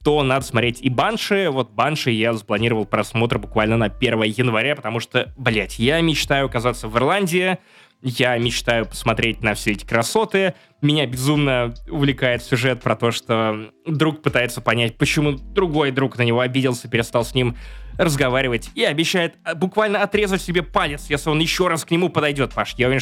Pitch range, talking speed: 115-155 Hz, 170 wpm